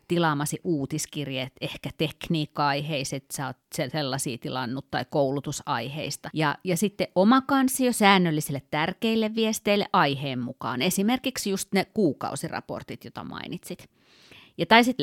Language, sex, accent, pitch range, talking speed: Finnish, female, native, 140-205 Hz, 115 wpm